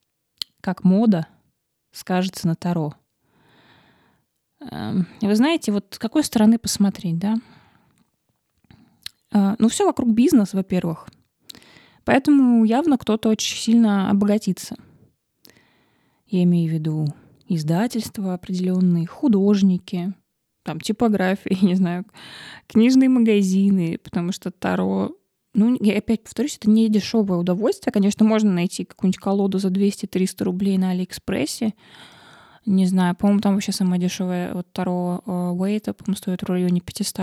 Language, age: Russian, 20-39